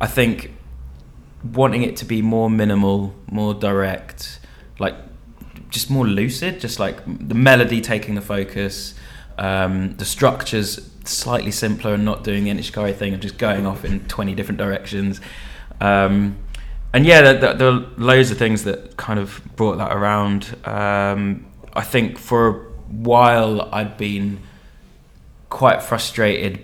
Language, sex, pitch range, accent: English, male, 100-115 Hz, British